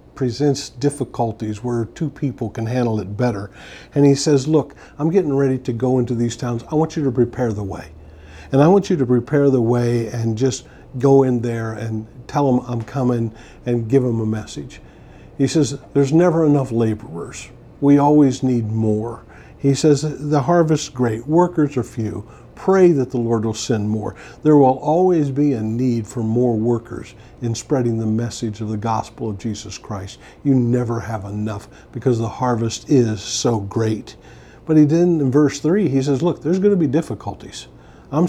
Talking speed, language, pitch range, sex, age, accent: 190 wpm, English, 115-140 Hz, male, 50-69, American